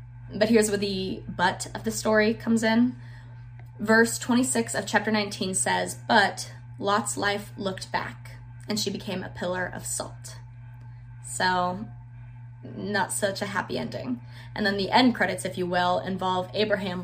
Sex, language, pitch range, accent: female, English, 120-205 Hz, American